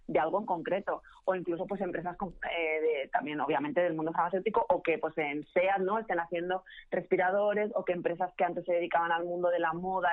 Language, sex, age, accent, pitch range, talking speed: Spanish, female, 30-49, Spanish, 170-215 Hz, 200 wpm